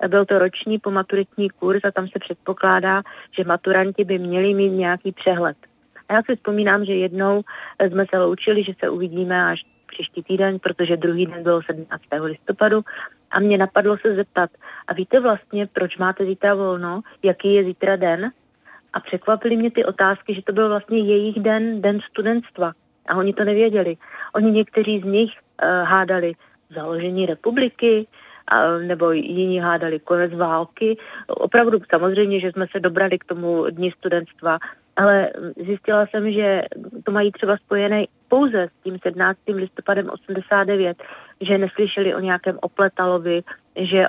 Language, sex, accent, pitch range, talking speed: Czech, female, native, 180-210 Hz, 150 wpm